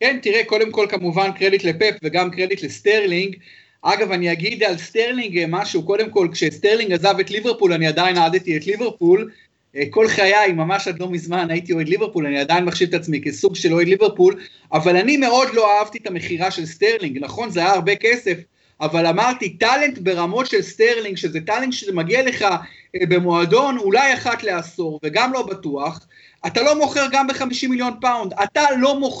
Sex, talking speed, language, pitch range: male, 130 wpm, Hebrew, 185-250 Hz